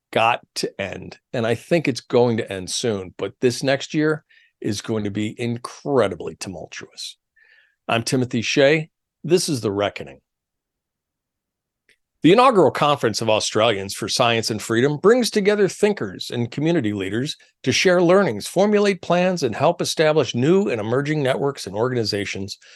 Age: 50-69